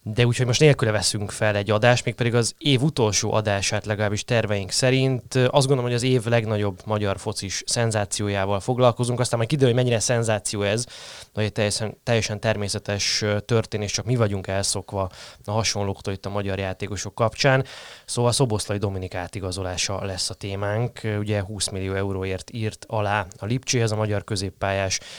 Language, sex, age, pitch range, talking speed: Hungarian, male, 20-39, 95-120 Hz, 160 wpm